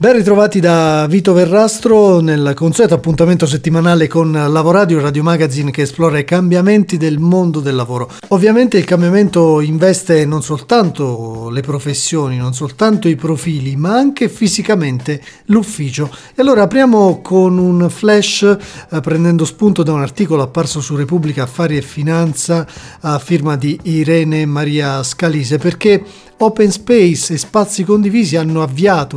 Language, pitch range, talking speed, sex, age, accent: Italian, 150-200 Hz, 140 wpm, male, 40-59, native